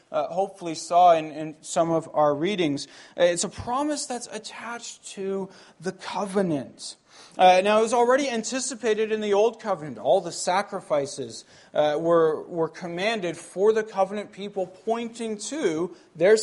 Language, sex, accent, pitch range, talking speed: English, male, American, 160-215 Hz, 150 wpm